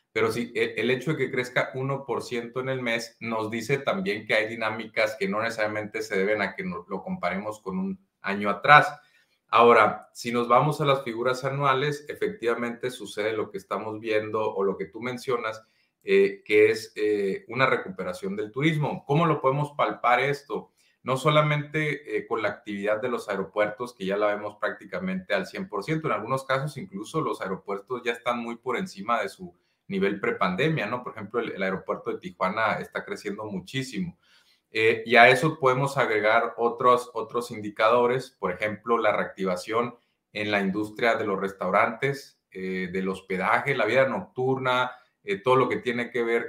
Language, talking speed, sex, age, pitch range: Spanish, 175 wpm, male, 30-49, 110-145 Hz